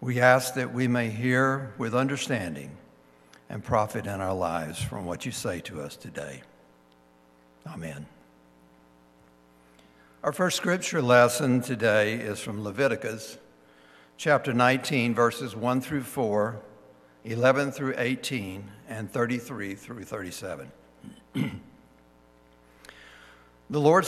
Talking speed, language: 110 wpm, English